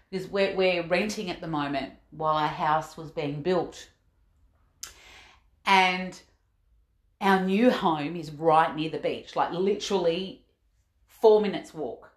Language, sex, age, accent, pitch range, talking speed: English, female, 40-59, Australian, 165-240 Hz, 125 wpm